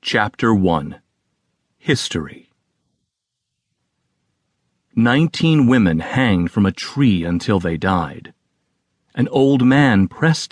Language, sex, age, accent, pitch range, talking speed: English, male, 40-59, American, 100-140 Hz, 90 wpm